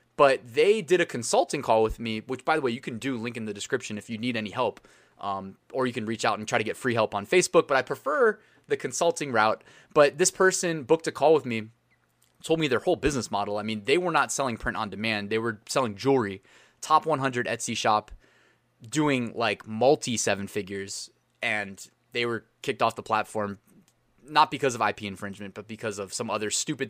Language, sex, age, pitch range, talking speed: English, male, 20-39, 105-130 Hz, 220 wpm